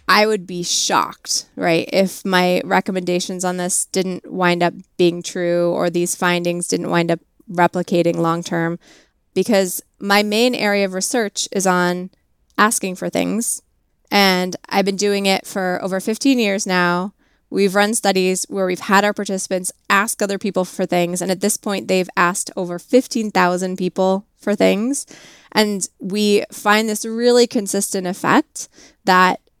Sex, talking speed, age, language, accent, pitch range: female, 155 wpm, 20-39, English, American, 180-205 Hz